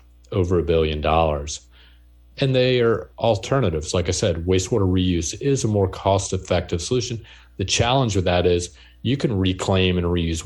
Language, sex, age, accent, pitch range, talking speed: English, male, 40-59, American, 80-105 Hz, 165 wpm